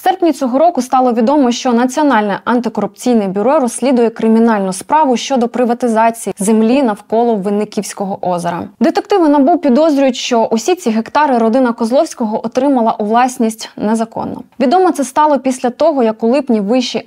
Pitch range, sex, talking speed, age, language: 215-275 Hz, female, 145 wpm, 20-39, Ukrainian